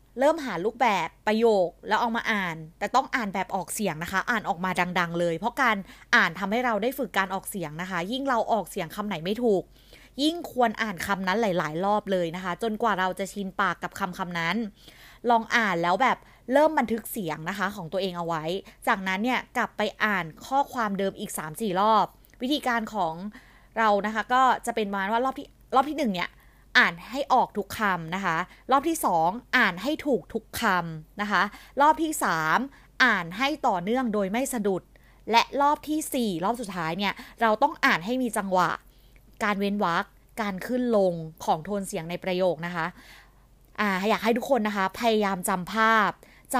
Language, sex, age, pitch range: Thai, female, 20-39, 185-245 Hz